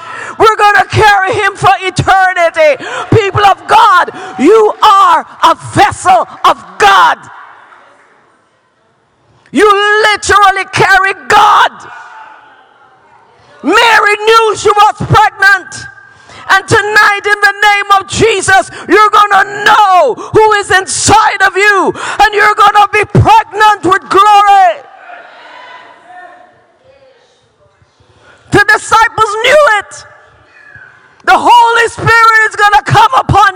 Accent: American